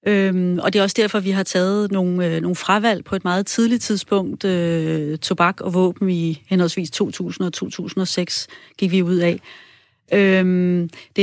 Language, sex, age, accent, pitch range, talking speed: Danish, female, 30-49, native, 175-200 Hz, 180 wpm